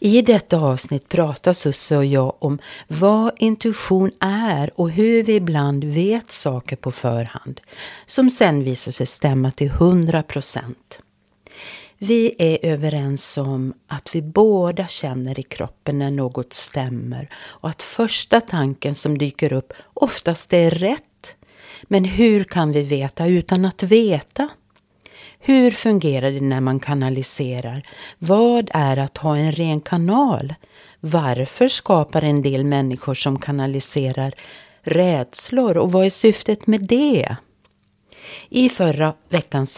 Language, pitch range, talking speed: Swedish, 135-185 Hz, 135 wpm